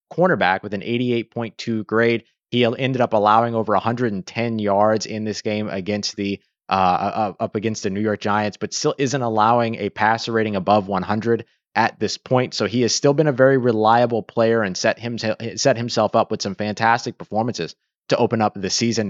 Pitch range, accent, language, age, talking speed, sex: 105-125 Hz, American, English, 20-39, 190 wpm, male